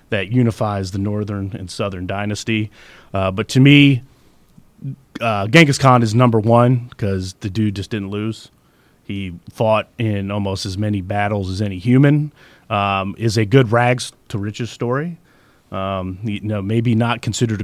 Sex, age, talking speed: male, 30-49, 155 wpm